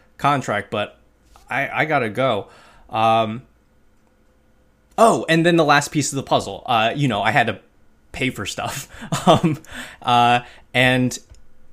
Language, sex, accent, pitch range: English, male, American, 105-125 Hz